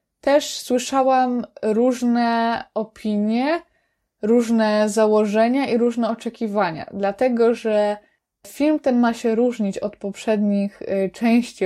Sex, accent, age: female, native, 20-39